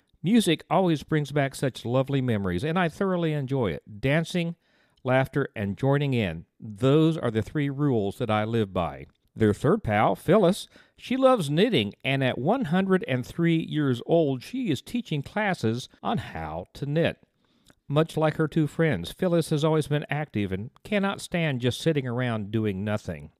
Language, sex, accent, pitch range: English, male, American, 110-160 Hz